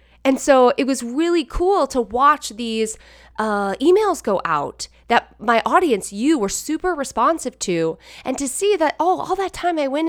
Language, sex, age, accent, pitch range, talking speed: English, female, 20-39, American, 185-270 Hz, 185 wpm